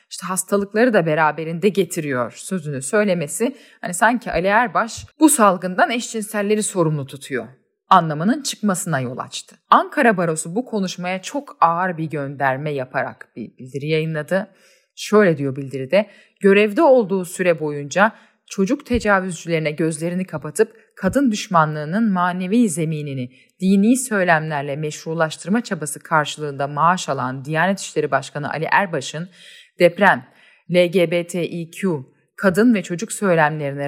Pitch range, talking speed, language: 155-210 Hz, 115 wpm, Turkish